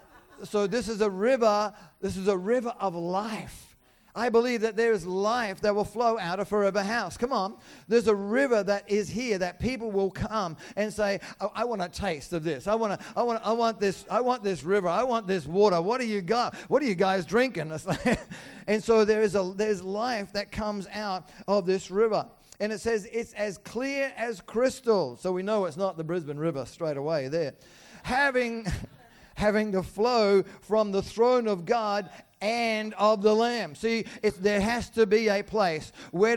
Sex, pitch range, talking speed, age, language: male, 190-220 Hz, 200 wpm, 40-59, English